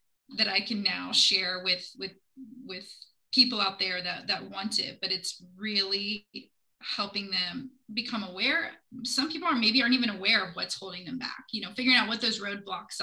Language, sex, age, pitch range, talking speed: English, female, 20-39, 195-255 Hz, 190 wpm